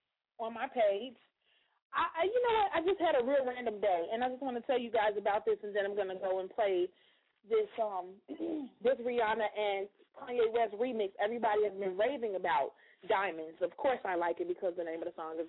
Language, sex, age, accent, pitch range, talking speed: English, female, 30-49, American, 205-280 Hz, 220 wpm